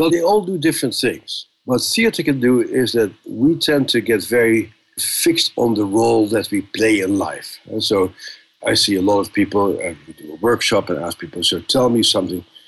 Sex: male